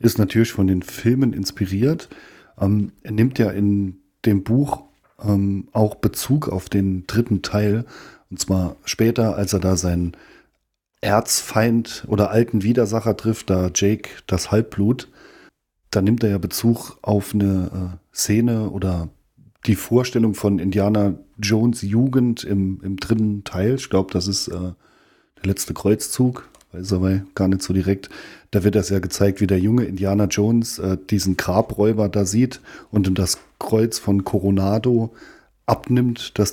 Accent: German